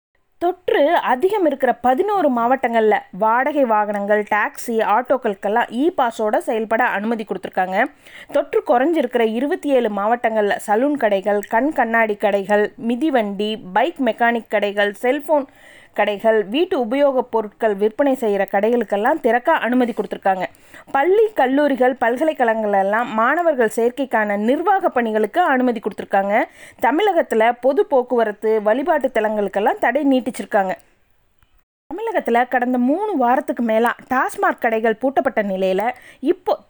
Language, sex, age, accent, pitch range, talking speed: Tamil, female, 20-39, native, 220-295 Hz, 105 wpm